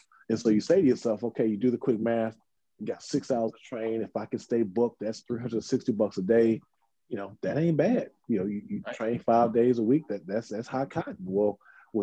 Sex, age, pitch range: male, 30-49, 105-125 Hz